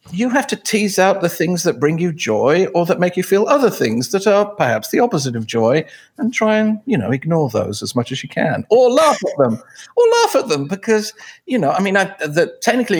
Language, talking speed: English, 240 wpm